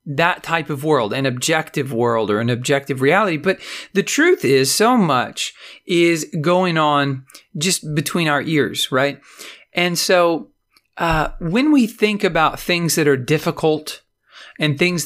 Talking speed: 150 wpm